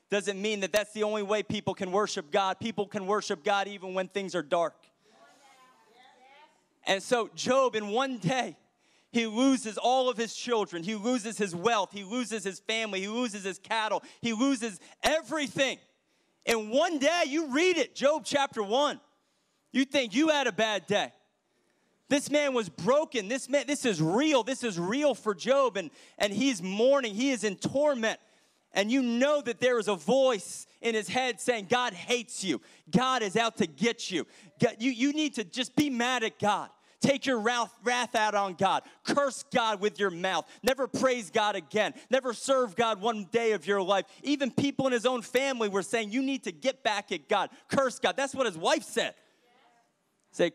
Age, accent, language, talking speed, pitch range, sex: 30-49, American, English, 190 wpm, 205-265 Hz, male